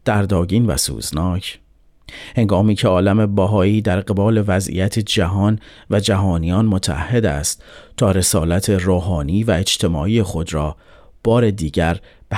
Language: Persian